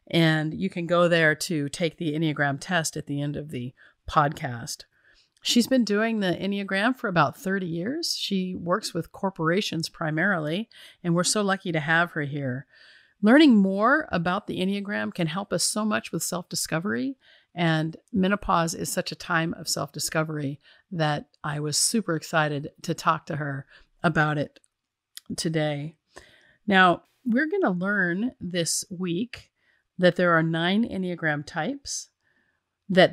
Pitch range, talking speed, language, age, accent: 160-205 Hz, 155 wpm, English, 40-59, American